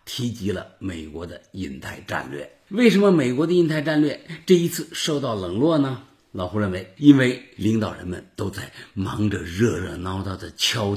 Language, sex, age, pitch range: Chinese, male, 50-69, 105-155 Hz